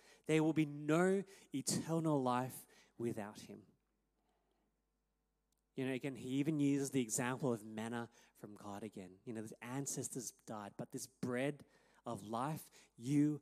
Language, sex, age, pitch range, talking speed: English, male, 30-49, 115-155 Hz, 145 wpm